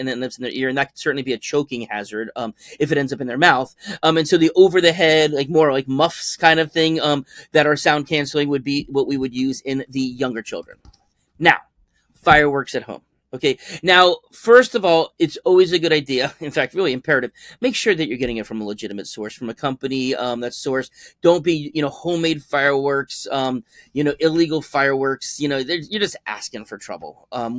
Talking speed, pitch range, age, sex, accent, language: 220 wpm, 135-170 Hz, 30-49, male, American, English